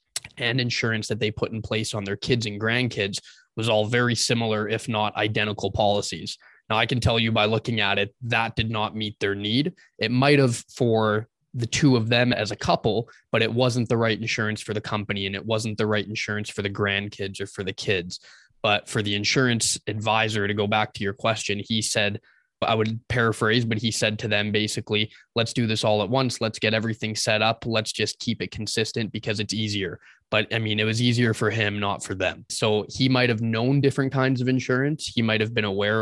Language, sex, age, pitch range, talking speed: English, male, 20-39, 105-115 Hz, 225 wpm